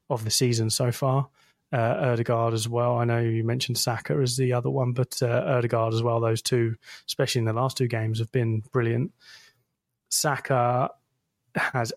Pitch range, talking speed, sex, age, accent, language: 115-135 Hz, 180 wpm, male, 20-39, British, English